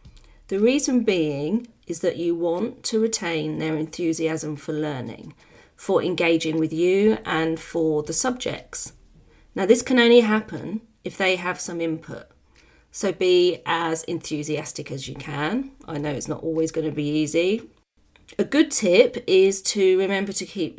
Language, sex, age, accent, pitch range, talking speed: English, female, 40-59, British, 155-190 Hz, 160 wpm